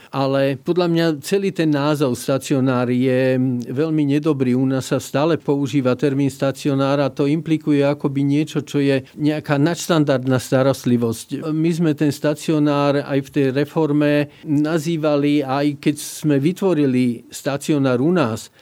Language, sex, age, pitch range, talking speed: Slovak, male, 50-69, 135-155 Hz, 140 wpm